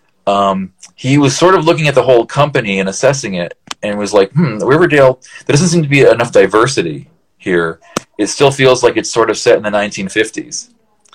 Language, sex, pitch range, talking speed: English, male, 105-155 Hz, 200 wpm